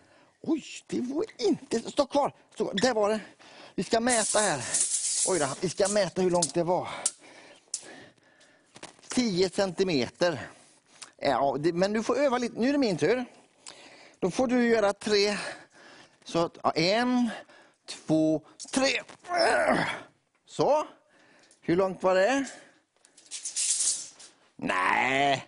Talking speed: 120 wpm